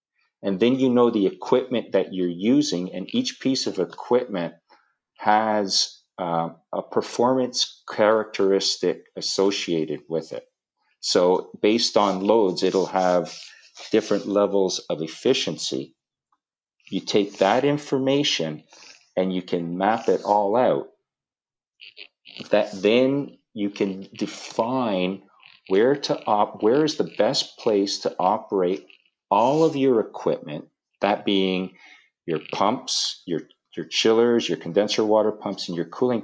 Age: 40-59